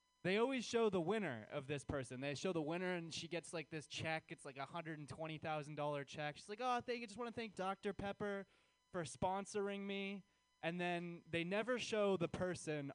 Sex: male